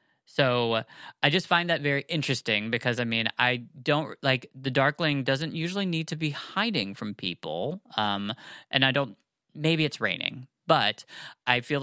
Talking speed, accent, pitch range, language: 170 wpm, American, 110-130 Hz, English